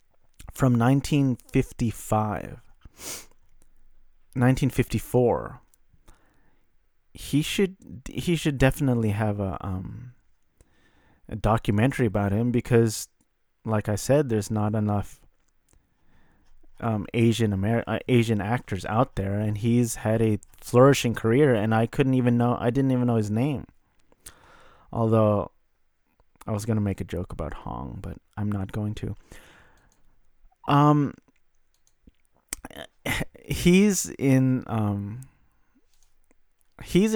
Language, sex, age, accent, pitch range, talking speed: English, male, 30-49, American, 105-130 Hz, 105 wpm